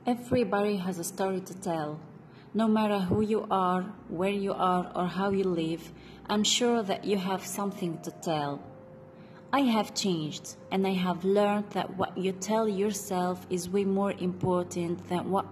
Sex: female